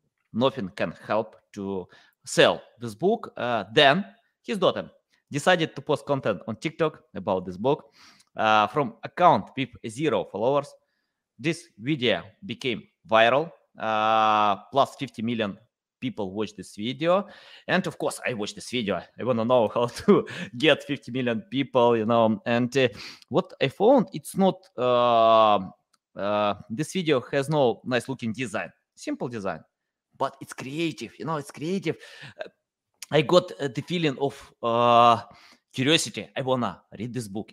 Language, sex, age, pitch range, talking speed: English, male, 20-39, 110-155 Hz, 155 wpm